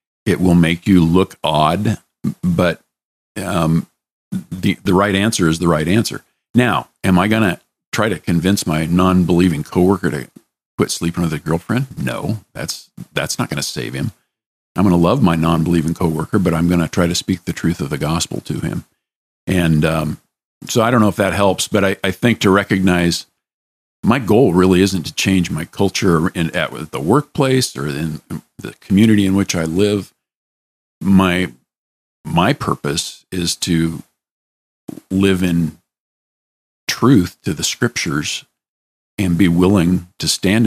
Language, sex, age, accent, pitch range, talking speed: English, male, 50-69, American, 80-95 Hz, 170 wpm